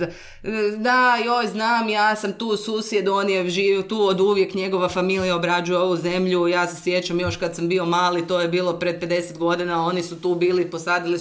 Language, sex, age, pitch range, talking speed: Croatian, female, 30-49, 165-215 Hz, 200 wpm